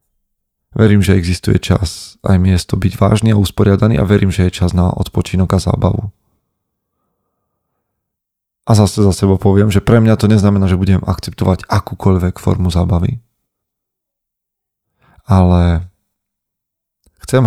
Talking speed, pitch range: 125 wpm, 90-105 Hz